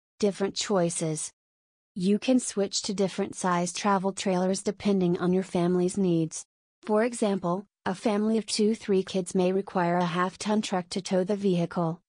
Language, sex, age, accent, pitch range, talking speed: English, female, 30-49, American, 180-200 Hz, 165 wpm